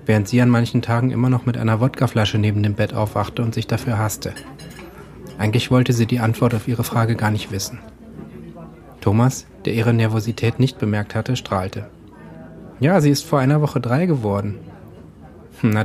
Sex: male